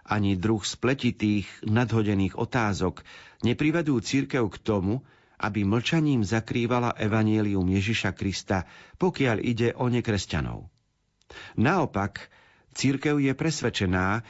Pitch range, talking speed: 95-125 Hz, 95 wpm